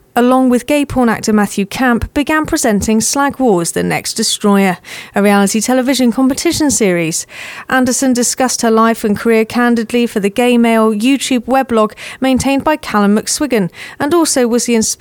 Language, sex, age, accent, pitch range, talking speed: English, female, 40-59, British, 205-255 Hz, 160 wpm